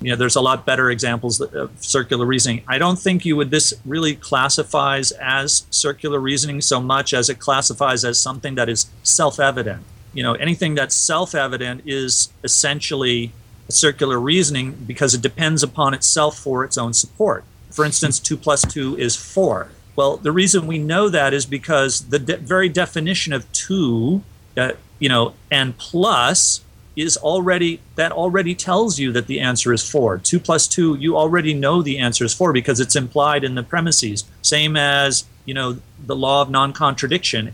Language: English